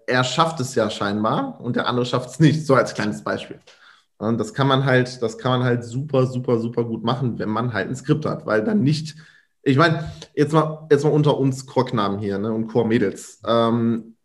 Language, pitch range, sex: German, 125-165 Hz, male